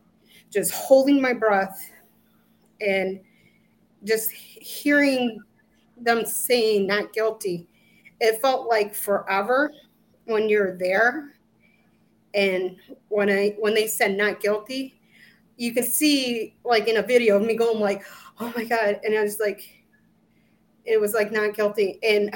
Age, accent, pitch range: 30-49, American, 205-235 Hz